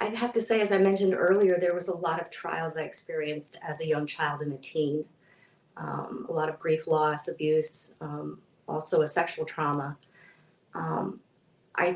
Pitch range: 150-175 Hz